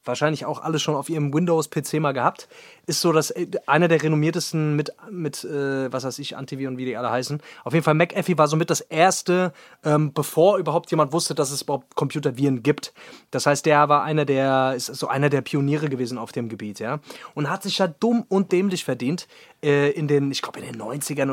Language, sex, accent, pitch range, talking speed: German, male, German, 150-200 Hz, 215 wpm